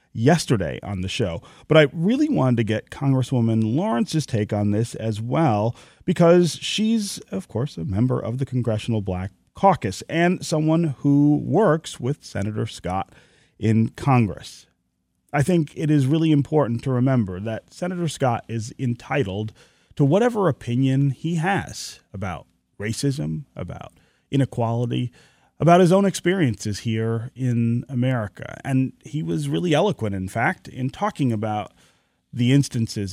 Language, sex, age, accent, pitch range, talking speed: English, male, 30-49, American, 110-150 Hz, 140 wpm